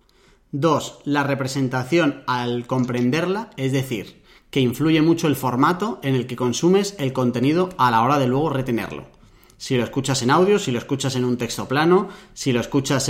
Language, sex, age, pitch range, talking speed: Spanish, male, 30-49, 125-160 Hz, 180 wpm